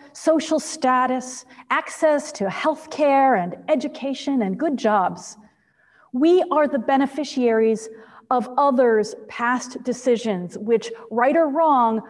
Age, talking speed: 40-59, 115 wpm